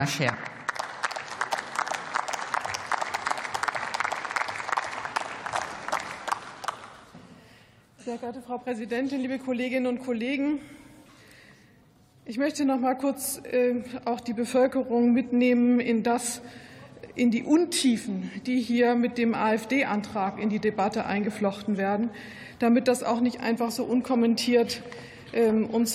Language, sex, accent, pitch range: German, female, German, 235-285 Hz